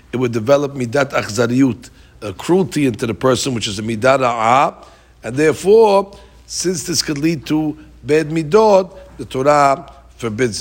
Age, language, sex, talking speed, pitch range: 60-79, English, male, 155 wpm, 120-150 Hz